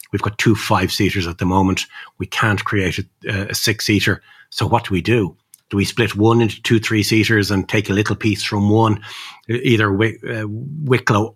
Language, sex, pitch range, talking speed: English, male, 100-115 Hz, 180 wpm